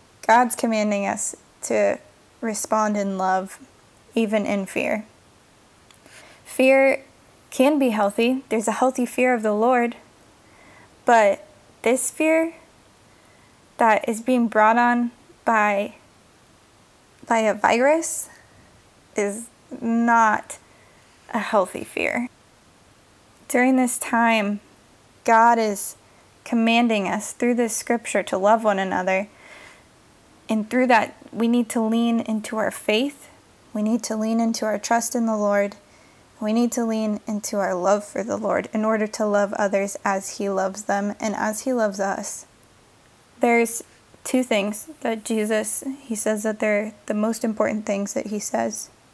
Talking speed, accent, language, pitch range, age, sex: 135 wpm, American, English, 210-245 Hz, 10-29, female